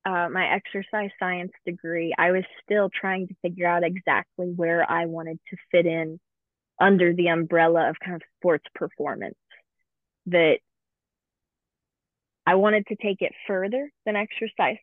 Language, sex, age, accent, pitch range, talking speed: English, female, 20-39, American, 165-195 Hz, 145 wpm